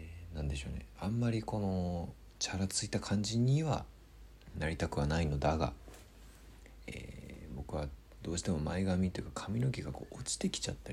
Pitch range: 75-100 Hz